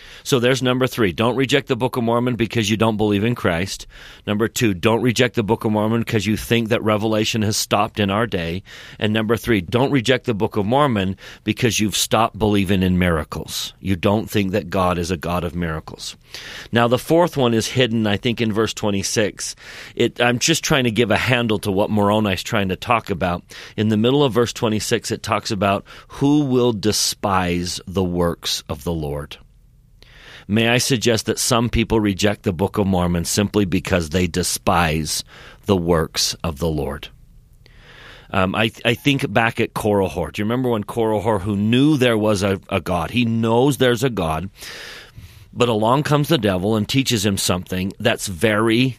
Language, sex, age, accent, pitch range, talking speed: English, male, 40-59, American, 95-120 Hz, 190 wpm